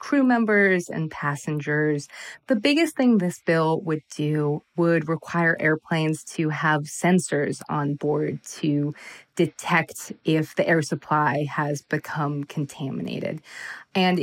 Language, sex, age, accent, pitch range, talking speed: English, female, 20-39, American, 155-190 Hz, 120 wpm